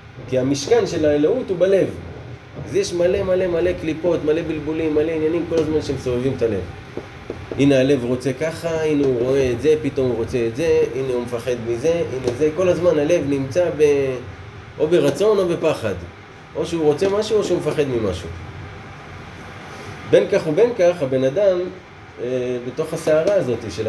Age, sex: 20-39, male